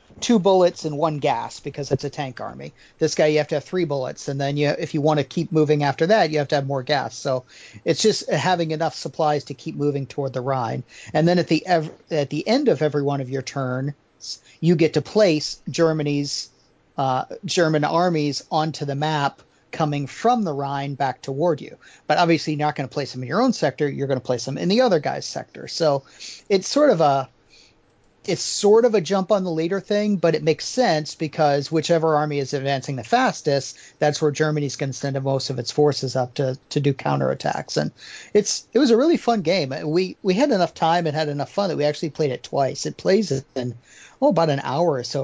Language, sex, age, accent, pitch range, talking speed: English, male, 40-59, American, 140-170 Hz, 230 wpm